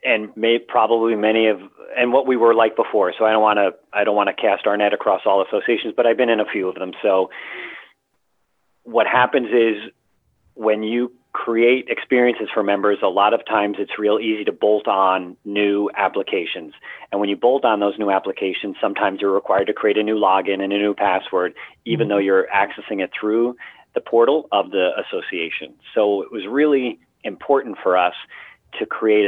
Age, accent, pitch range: 40-59, American, 100-115 Hz